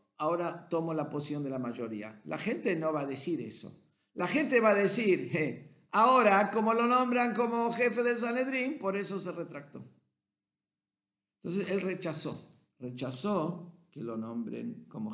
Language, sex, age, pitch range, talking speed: Spanish, male, 50-69, 115-170 Hz, 160 wpm